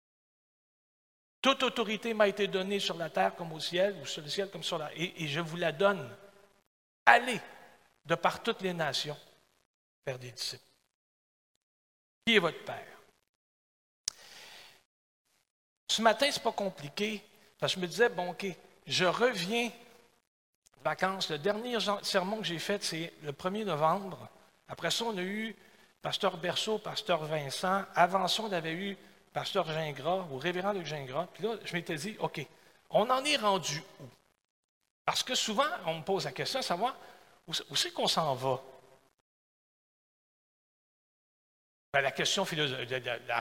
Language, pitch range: French, 155-205 Hz